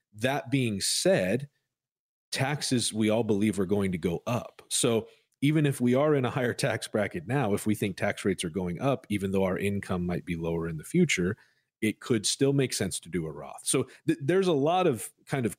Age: 40-59